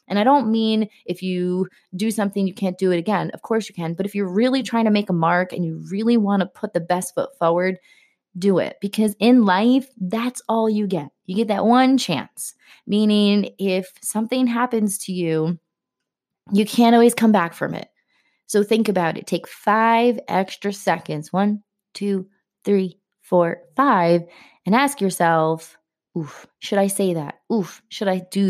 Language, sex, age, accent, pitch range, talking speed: English, female, 20-39, American, 175-220 Hz, 185 wpm